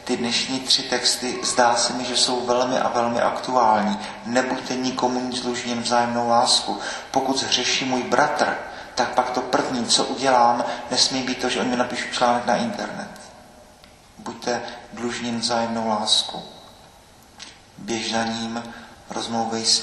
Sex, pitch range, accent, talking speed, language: male, 105-120 Hz, native, 135 wpm, Czech